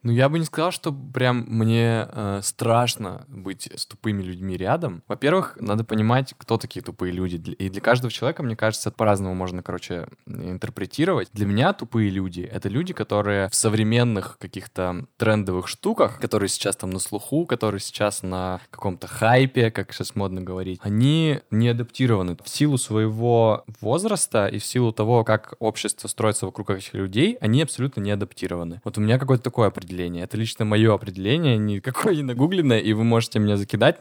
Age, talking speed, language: 20-39, 170 wpm, Russian